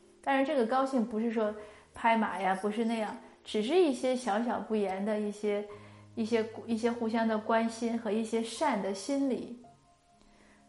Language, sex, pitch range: Chinese, female, 210-235 Hz